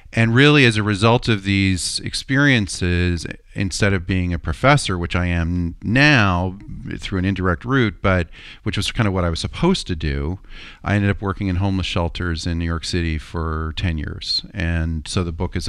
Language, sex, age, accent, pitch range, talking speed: English, male, 40-59, American, 85-105 Hz, 195 wpm